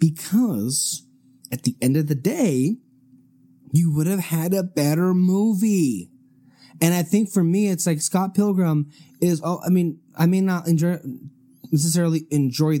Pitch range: 155-220 Hz